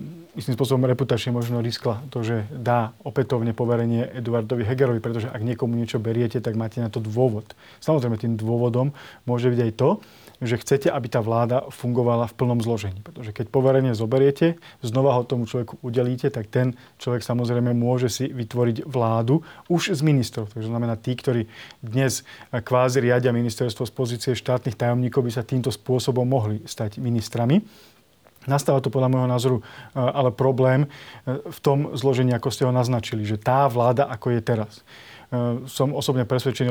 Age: 30-49